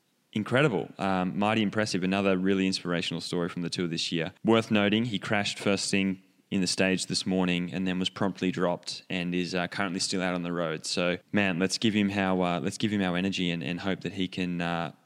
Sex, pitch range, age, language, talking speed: male, 90-105 Hz, 10-29, English, 225 wpm